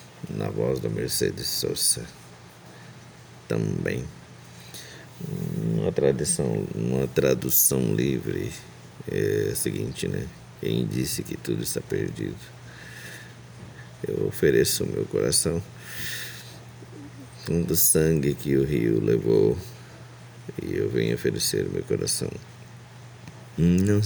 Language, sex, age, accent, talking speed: Portuguese, male, 50-69, Brazilian, 95 wpm